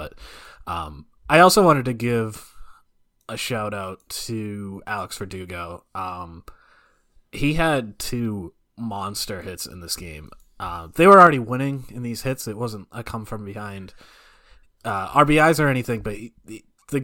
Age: 20-39